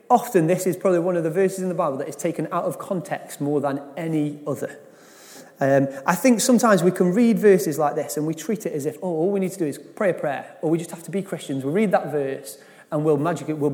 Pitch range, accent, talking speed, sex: 150-190 Hz, British, 265 wpm, male